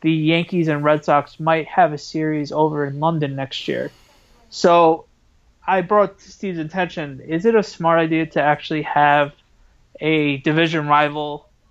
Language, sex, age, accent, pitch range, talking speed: English, male, 20-39, American, 150-170 Hz, 160 wpm